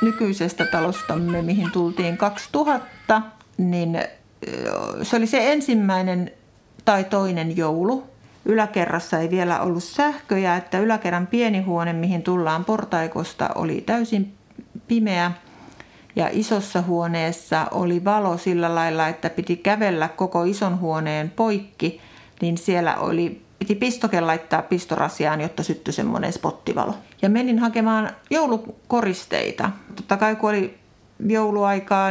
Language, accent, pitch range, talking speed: Finnish, native, 170-215 Hz, 115 wpm